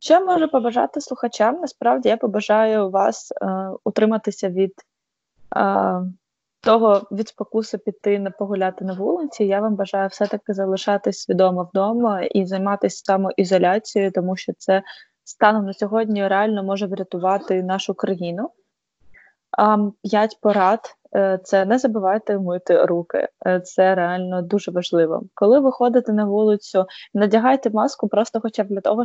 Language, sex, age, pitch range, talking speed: Ukrainian, female, 20-39, 195-220 Hz, 130 wpm